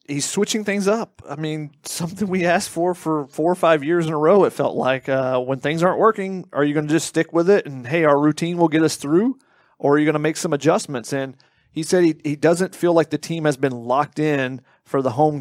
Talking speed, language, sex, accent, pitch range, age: 260 wpm, English, male, American, 135-160 Hz, 30-49